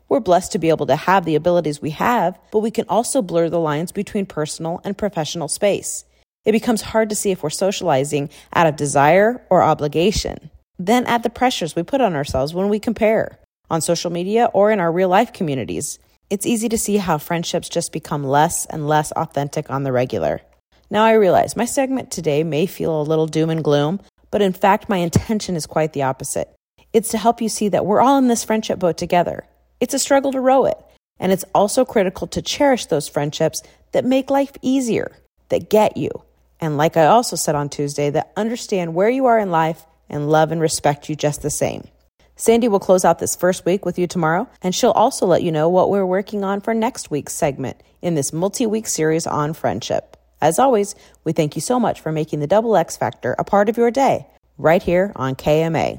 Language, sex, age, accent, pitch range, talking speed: English, female, 30-49, American, 155-215 Hz, 215 wpm